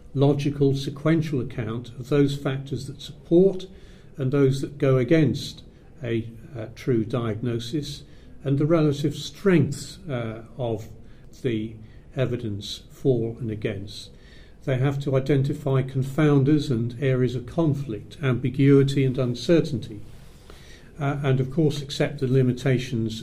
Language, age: English, 50-69